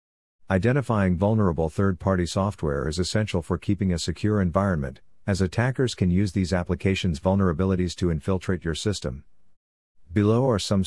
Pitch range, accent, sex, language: 85-100 Hz, American, male, English